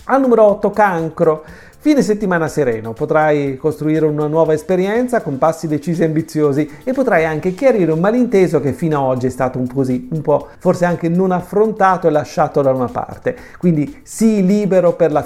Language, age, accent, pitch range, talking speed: Italian, 40-59, native, 145-190 Hz, 190 wpm